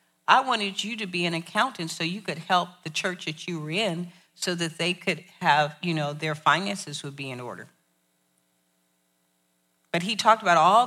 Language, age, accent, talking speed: English, 40-59, American, 195 wpm